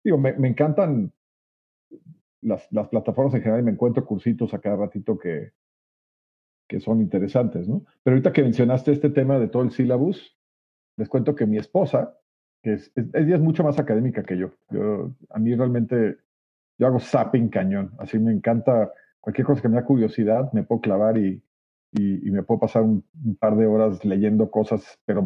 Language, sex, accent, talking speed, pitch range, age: Spanish, male, Mexican, 190 wpm, 110-140 Hz, 50-69